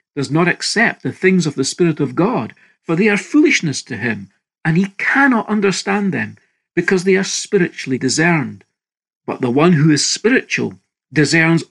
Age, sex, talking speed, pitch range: 50-69, male, 170 wpm, 130-195 Hz